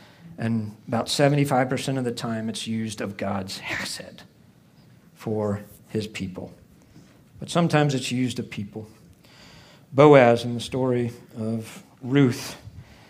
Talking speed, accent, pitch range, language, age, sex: 120 wpm, American, 115-145 Hz, English, 50-69, male